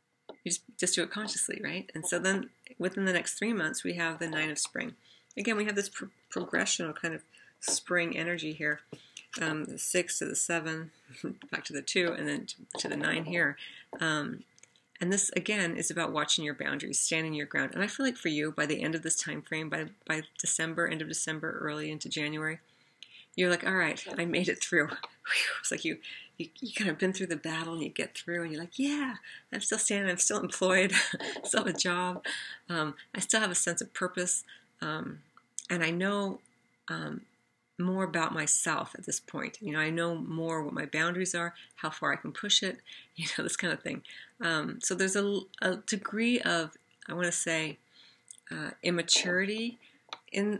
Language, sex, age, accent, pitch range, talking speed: English, female, 40-59, American, 160-200 Hz, 205 wpm